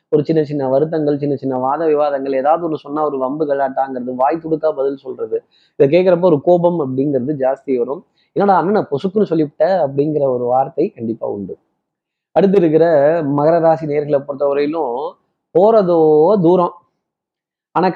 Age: 20-39